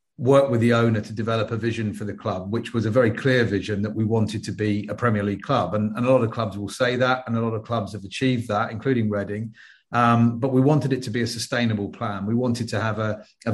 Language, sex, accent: English, male, British